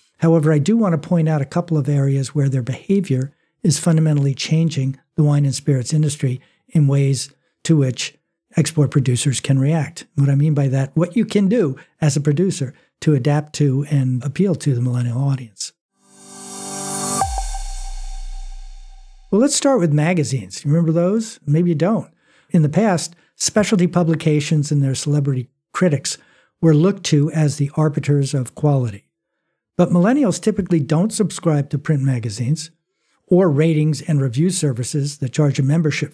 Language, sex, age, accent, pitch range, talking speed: English, male, 60-79, American, 140-175 Hz, 160 wpm